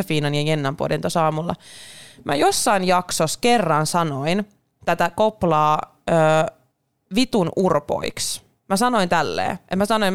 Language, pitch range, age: Finnish, 155-205 Hz, 20-39